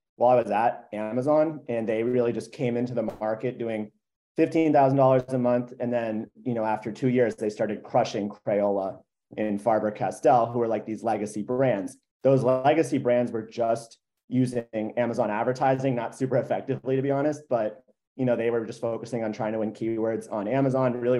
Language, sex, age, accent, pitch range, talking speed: English, male, 30-49, American, 110-130 Hz, 190 wpm